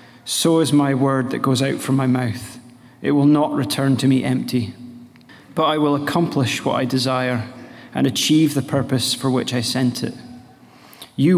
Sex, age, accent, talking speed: male, 30-49, British, 180 wpm